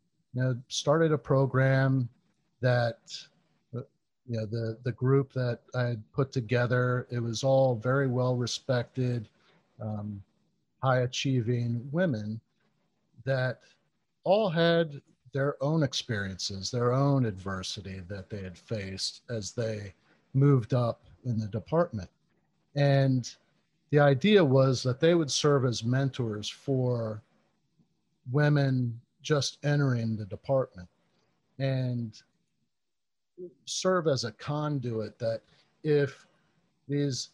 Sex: male